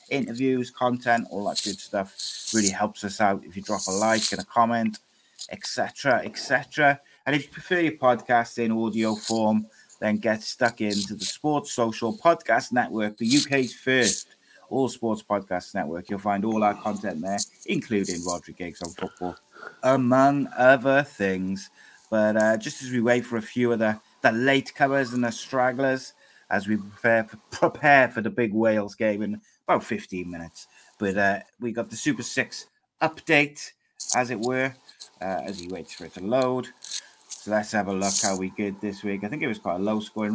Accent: British